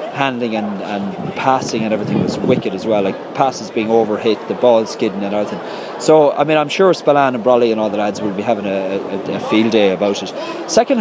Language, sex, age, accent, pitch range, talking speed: English, male, 30-49, Irish, 110-145 Hz, 230 wpm